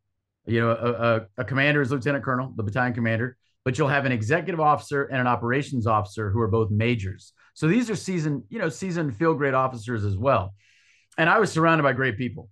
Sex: male